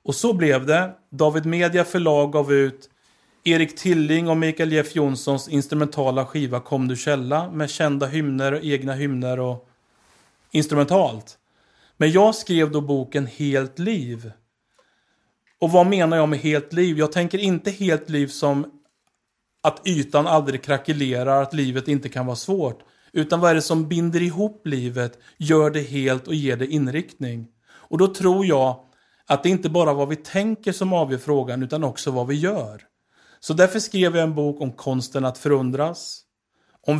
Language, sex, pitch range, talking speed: Swedish, male, 135-170 Hz, 170 wpm